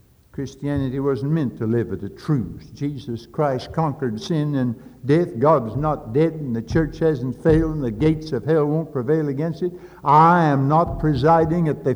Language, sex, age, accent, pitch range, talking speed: English, male, 60-79, American, 140-165 Hz, 185 wpm